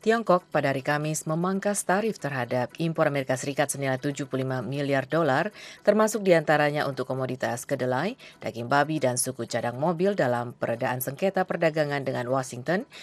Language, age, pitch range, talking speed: Indonesian, 30-49, 130-165 Hz, 145 wpm